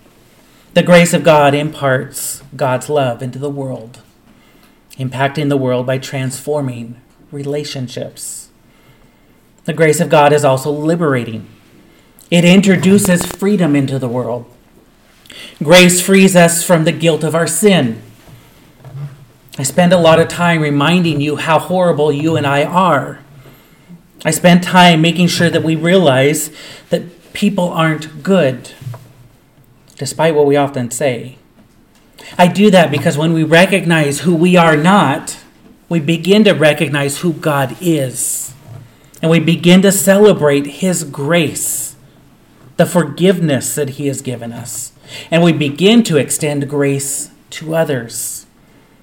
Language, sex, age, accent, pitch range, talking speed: English, male, 40-59, American, 140-170 Hz, 135 wpm